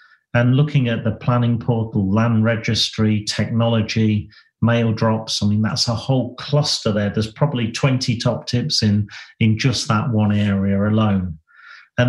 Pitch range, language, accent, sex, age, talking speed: 105-125 Hz, English, British, male, 40-59, 155 wpm